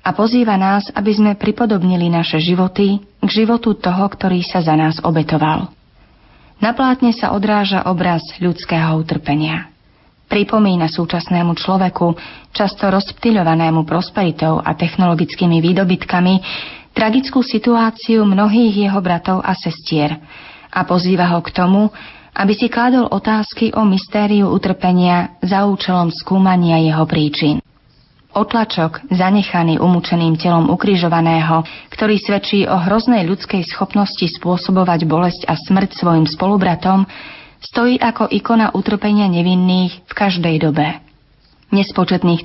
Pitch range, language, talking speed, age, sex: 170-210 Hz, Slovak, 115 wpm, 30-49, female